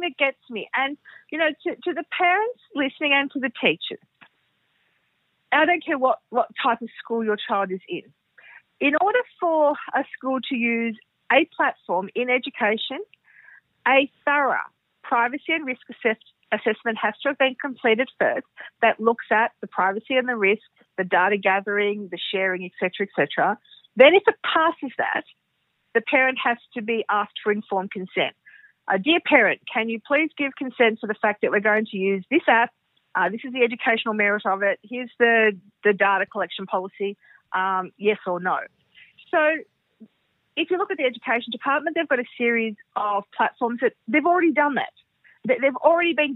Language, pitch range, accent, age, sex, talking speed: English, 215-290 Hz, Australian, 50-69, female, 175 wpm